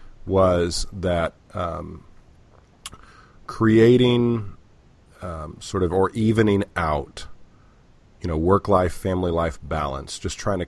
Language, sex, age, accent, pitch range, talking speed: English, male, 40-59, American, 80-100 Hz, 100 wpm